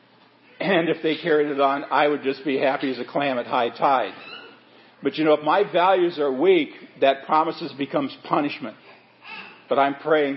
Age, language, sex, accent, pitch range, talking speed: 50-69, English, male, American, 140-180 Hz, 185 wpm